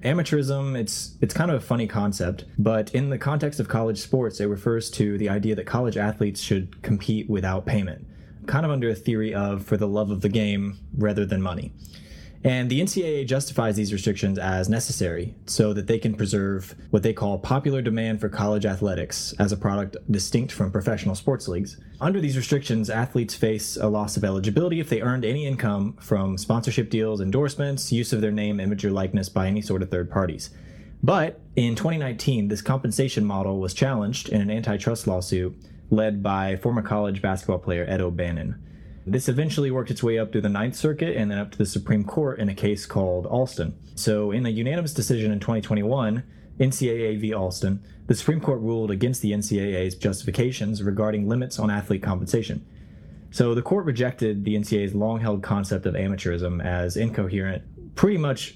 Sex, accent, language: male, American, English